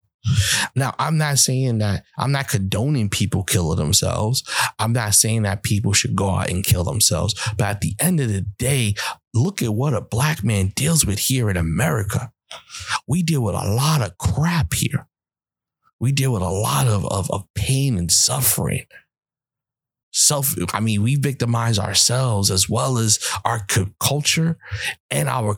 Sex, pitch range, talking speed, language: male, 105-140 Hz, 170 wpm, English